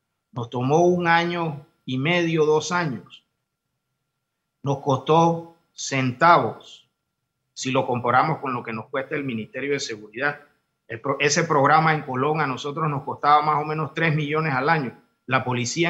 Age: 50-69